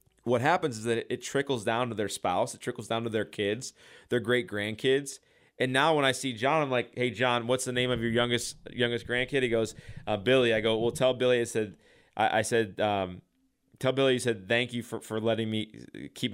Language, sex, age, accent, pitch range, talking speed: English, male, 20-39, American, 110-130 Hz, 230 wpm